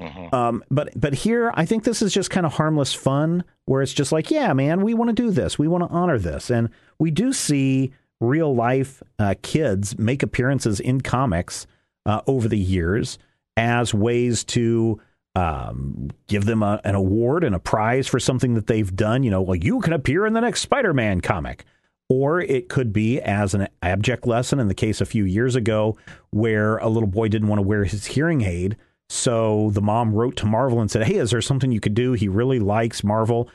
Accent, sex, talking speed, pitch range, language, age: American, male, 215 wpm, 105-130 Hz, English, 40-59